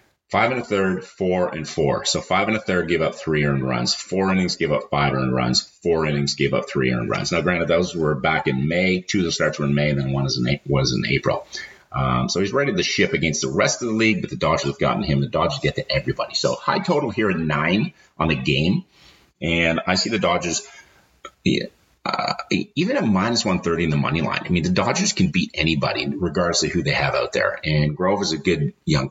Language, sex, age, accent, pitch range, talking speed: English, male, 30-49, American, 70-90 Hz, 245 wpm